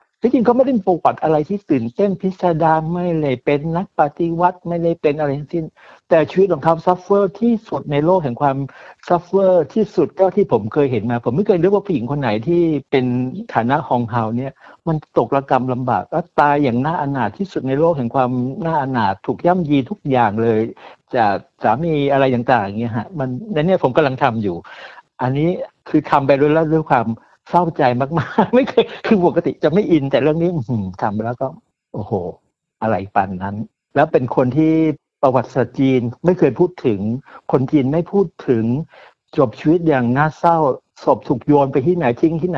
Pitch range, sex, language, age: 130-175 Hz, male, Thai, 60-79